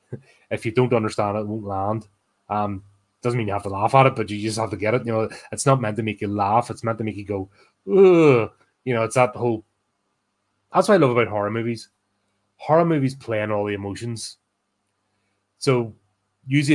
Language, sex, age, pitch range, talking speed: English, male, 30-49, 100-115 Hz, 220 wpm